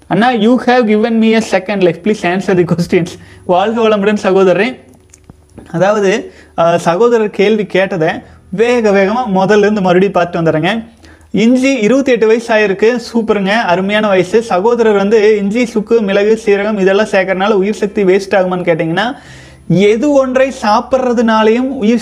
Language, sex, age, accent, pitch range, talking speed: Tamil, male, 30-49, native, 185-230 Hz, 105 wpm